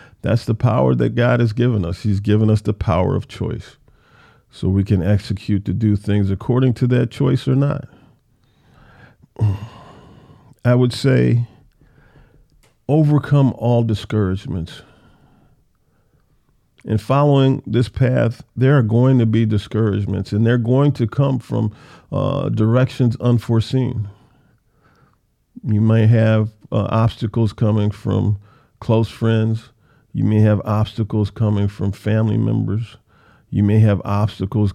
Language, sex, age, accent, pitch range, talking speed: English, male, 50-69, American, 105-125 Hz, 130 wpm